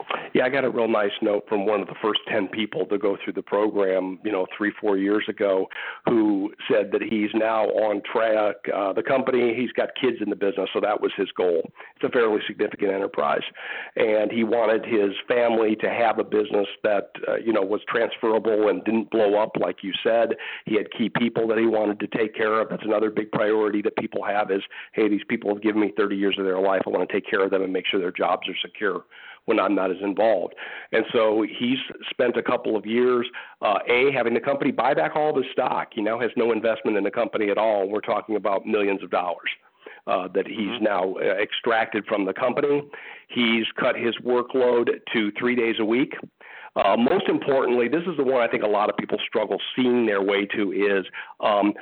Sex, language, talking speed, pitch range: male, English, 225 wpm, 105-130 Hz